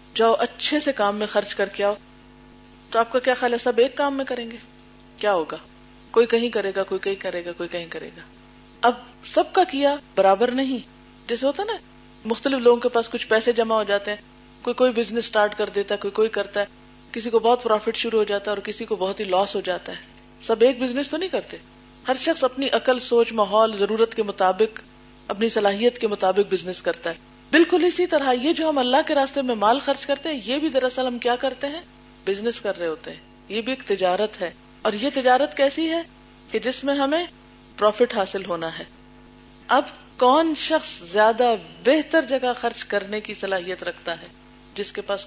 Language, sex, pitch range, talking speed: Urdu, female, 200-265 Hz, 215 wpm